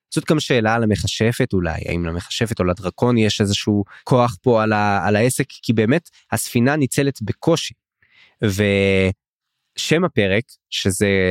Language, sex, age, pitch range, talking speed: English, male, 20-39, 105-135 Hz, 135 wpm